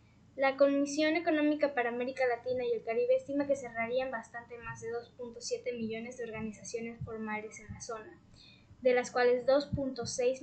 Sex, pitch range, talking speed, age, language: female, 230-275 Hz, 155 wpm, 10-29, English